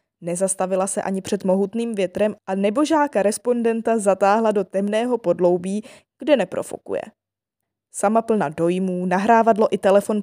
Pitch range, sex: 190-230 Hz, female